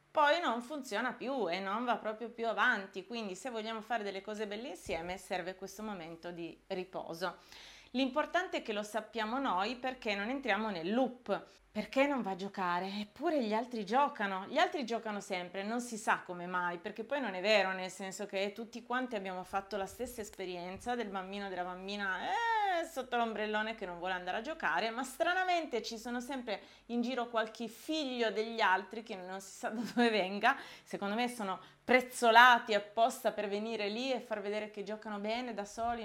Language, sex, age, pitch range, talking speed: Italian, female, 30-49, 195-255 Hz, 190 wpm